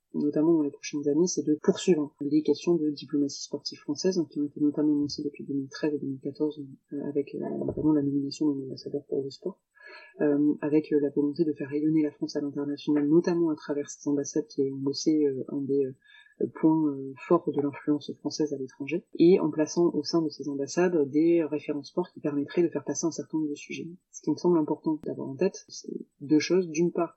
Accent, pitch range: French, 145-165 Hz